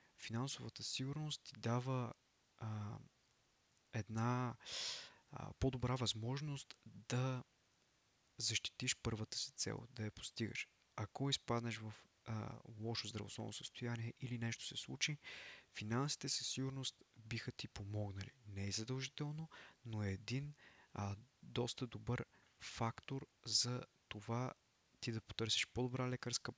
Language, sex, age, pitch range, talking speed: Bulgarian, male, 20-39, 110-125 Hz, 115 wpm